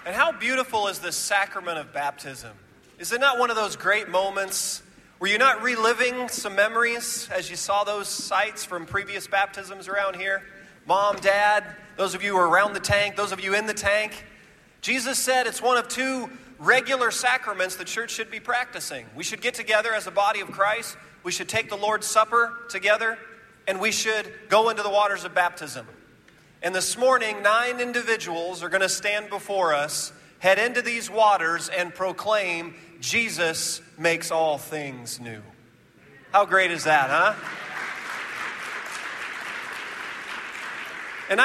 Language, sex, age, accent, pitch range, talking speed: English, male, 40-59, American, 180-225 Hz, 165 wpm